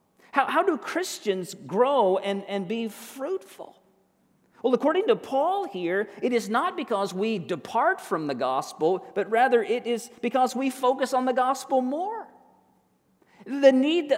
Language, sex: English, male